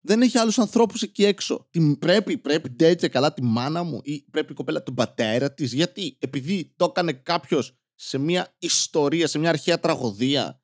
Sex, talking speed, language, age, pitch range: male, 185 wpm, Greek, 20-39, 140-205 Hz